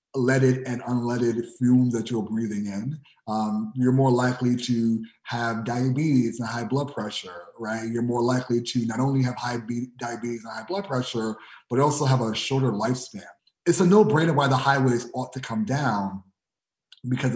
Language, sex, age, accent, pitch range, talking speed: English, male, 30-49, American, 120-140 Hz, 175 wpm